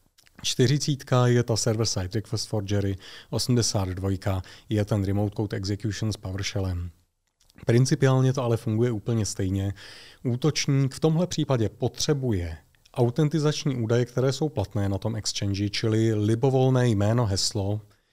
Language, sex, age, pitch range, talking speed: Czech, male, 30-49, 100-125 Hz, 125 wpm